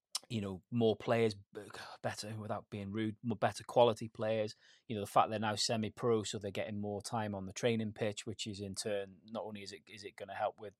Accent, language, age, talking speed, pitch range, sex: British, English, 30-49, 235 wpm, 105-120 Hz, male